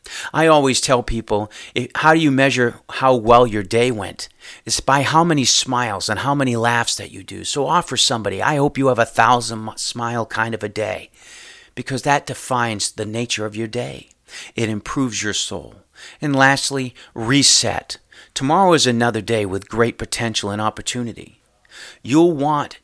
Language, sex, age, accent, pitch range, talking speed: English, male, 40-59, American, 105-135 Hz, 170 wpm